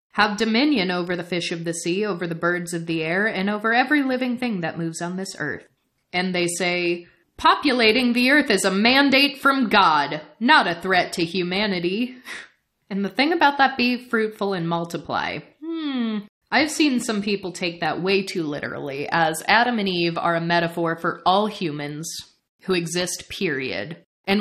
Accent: American